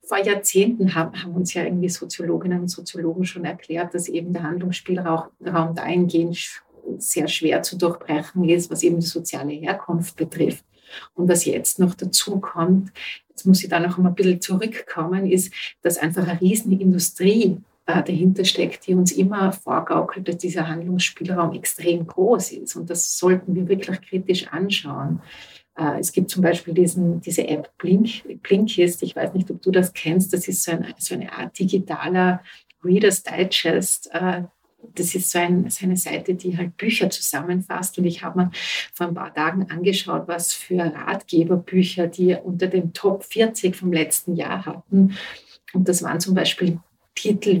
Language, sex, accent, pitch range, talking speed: German, female, Austrian, 170-185 Hz, 160 wpm